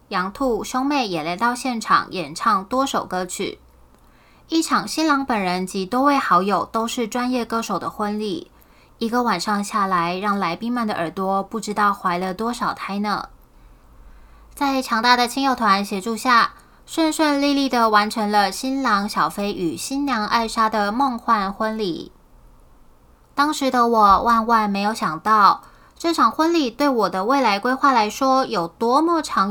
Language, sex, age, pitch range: Chinese, female, 20-39, 195-255 Hz